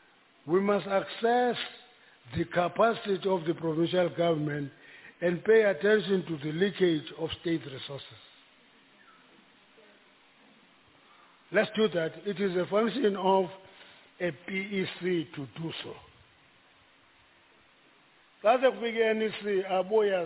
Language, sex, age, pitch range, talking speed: English, male, 50-69, 120-195 Hz, 105 wpm